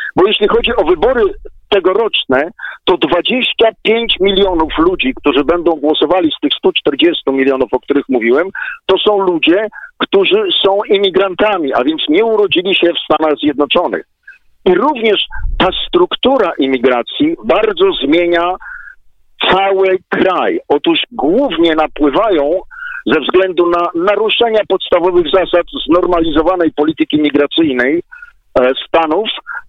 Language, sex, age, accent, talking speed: Polish, male, 50-69, native, 115 wpm